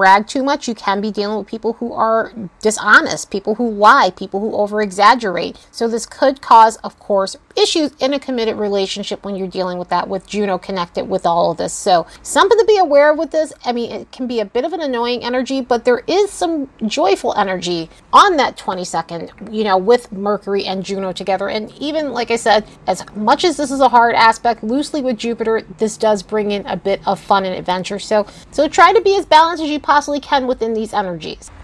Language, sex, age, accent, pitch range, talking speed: English, female, 30-49, American, 205-265 Hz, 220 wpm